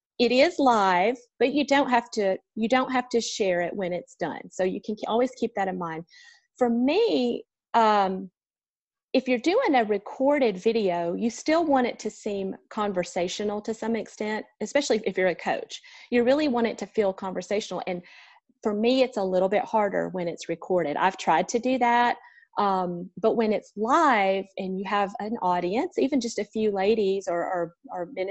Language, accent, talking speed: English, American, 195 wpm